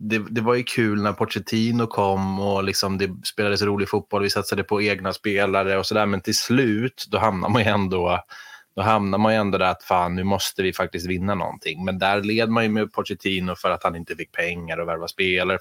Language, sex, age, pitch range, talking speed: Swedish, male, 20-39, 90-105 Hz, 210 wpm